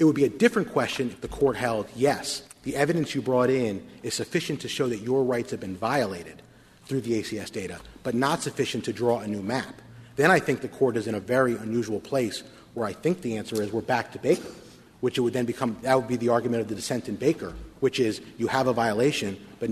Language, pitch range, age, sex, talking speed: English, 115-140 Hz, 30-49, male, 245 wpm